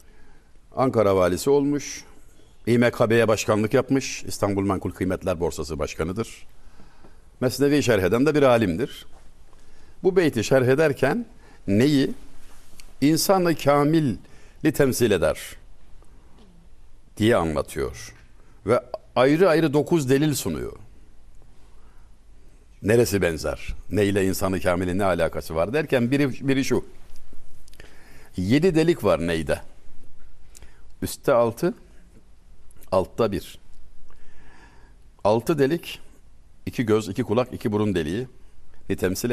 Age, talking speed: 60-79, 100 wpm